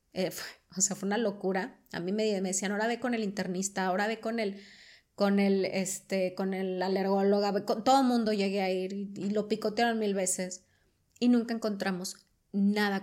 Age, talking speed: 30-49, 195 wpm